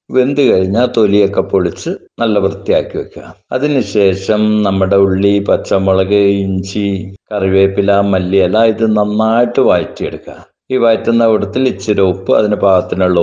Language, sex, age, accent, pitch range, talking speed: Malayalam, male, 60-79, native, 100-115 Hz, 120 wpm